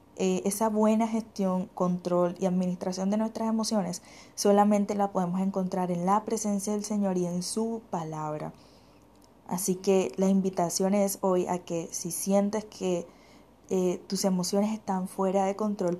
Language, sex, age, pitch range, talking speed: Spanish, female, 20-39, 180-205 Hz, 155 wpm